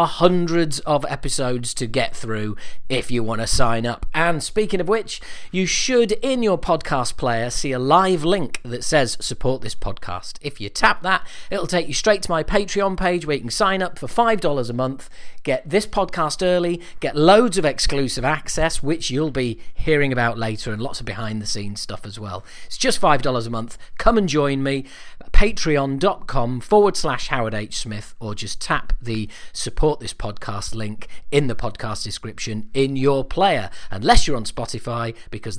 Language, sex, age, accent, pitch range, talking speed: English, male, 40-59, British, 115-170 Hz, 185 wpm